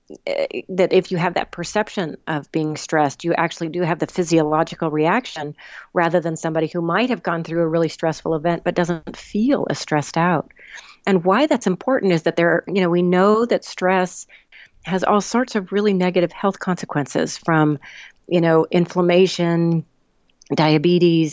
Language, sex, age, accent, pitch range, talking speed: English, female, 40-59, American, 165-200 Hz, 170 wpm